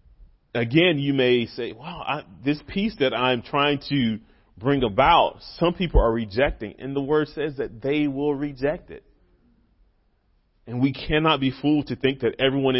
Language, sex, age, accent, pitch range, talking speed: English, male, 30-49, American, 100-135 Hz, 165 wpm